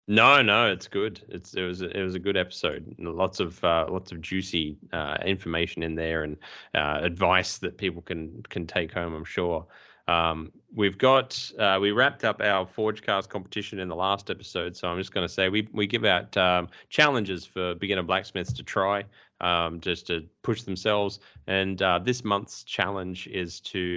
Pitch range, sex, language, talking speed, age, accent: 85-105 Hz, male, English, 190 wpm, 20-39, Australian